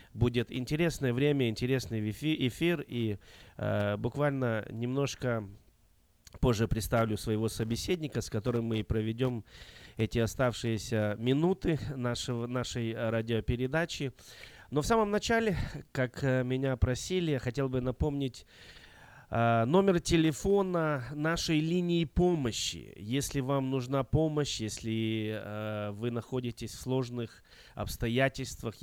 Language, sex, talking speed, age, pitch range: Russian, male, 110 wpm, 20-39, 115-145 Hz